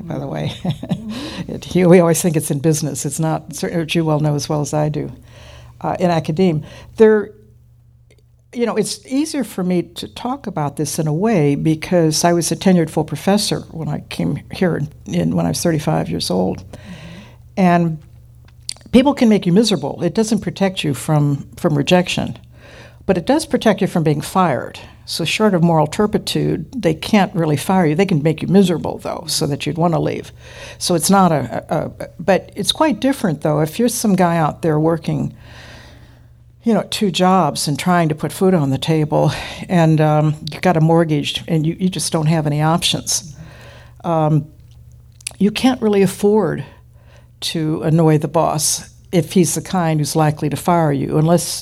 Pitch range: 150-185 Hz